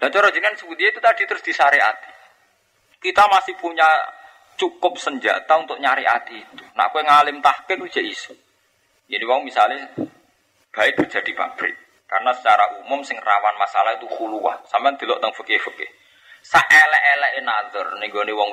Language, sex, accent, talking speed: Indonesian, male, native, 150 wpm